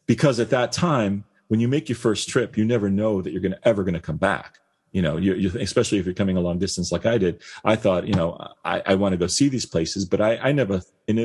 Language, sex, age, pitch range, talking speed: English, male, 40-59, 85-100 Hz, 270 wpm